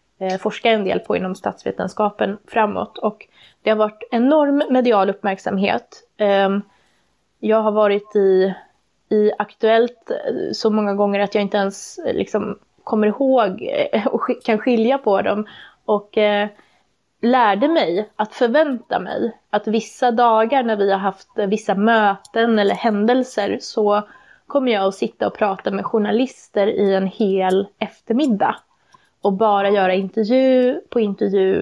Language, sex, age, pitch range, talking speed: Swedish, female, 20-39, 200-235 Hz, 130 wpm